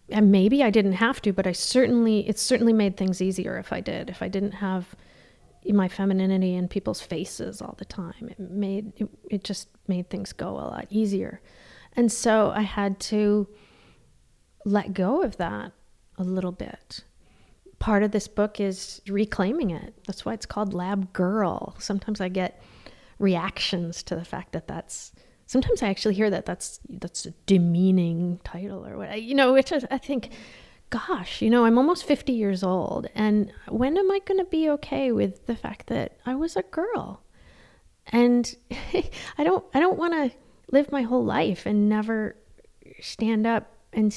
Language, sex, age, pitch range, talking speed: English, female, 30-49, 195-240 Hz, 180 wpm